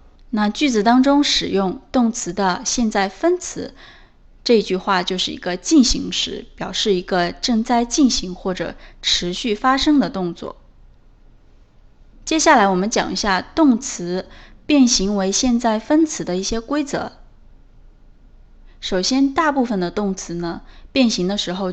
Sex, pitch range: female, 190-240 Hz